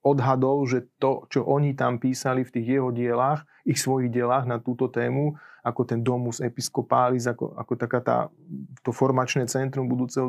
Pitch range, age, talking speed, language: 130-150 Hz, 30-49, 165 wpm, Slovak